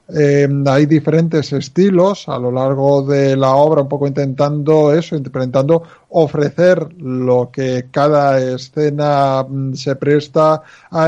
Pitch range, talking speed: 140-165 Hz, 125 wpm